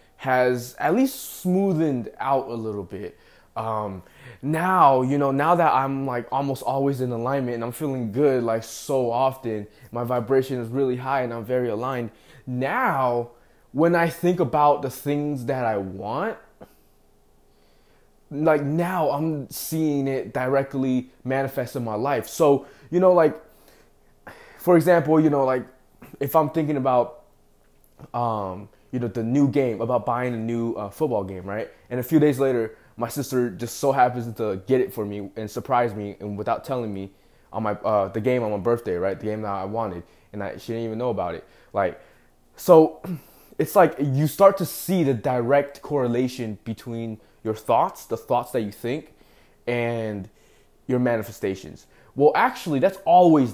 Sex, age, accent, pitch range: male, 20-39, American, 115-140 Hz